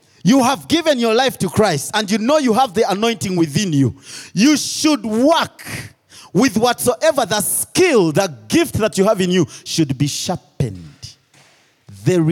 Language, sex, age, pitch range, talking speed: English, male, 40-59, 135-220 Hz, 165 wpm